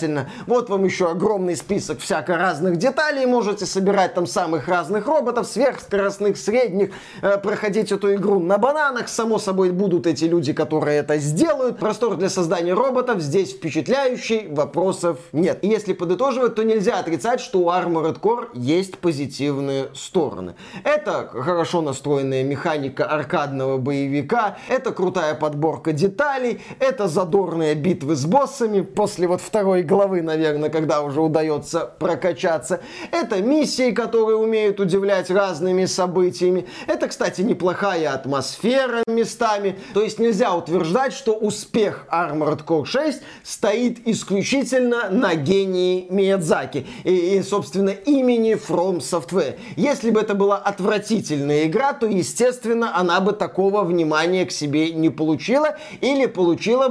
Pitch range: 170-225 Hz